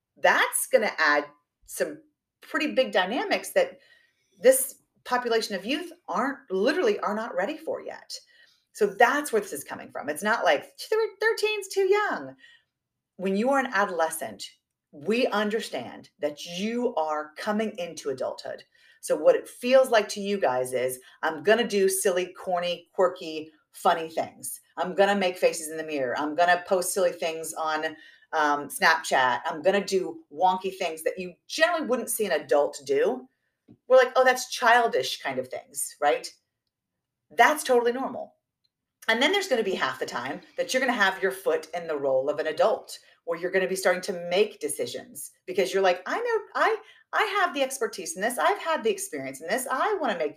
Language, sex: English, female